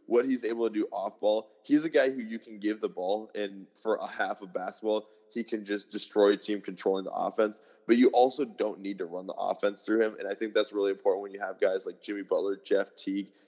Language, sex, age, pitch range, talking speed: English, male, 20-39, 100-125 Hz, 250 wpm